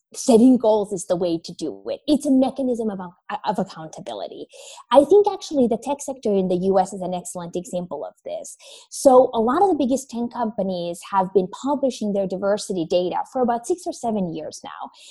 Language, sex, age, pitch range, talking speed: English, female, 20-39, 195-270 Hz, 200 wpm